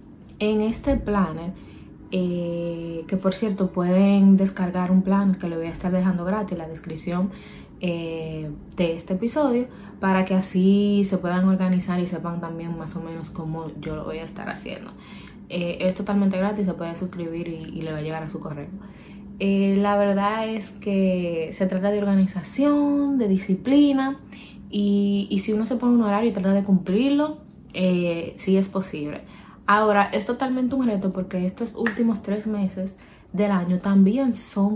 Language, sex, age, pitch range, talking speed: Spanish, female, 20-39, 175-205 Hz, 175 wpm